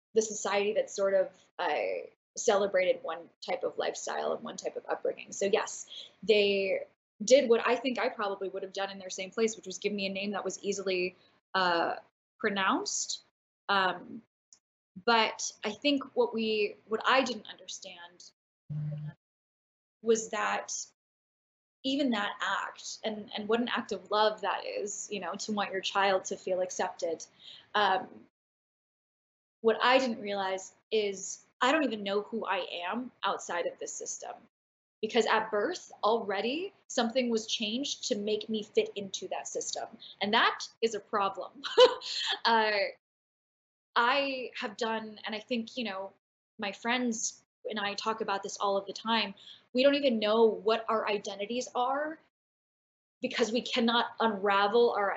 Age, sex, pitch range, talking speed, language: 10-29, female, 200-245 Hz, 160 wpm, English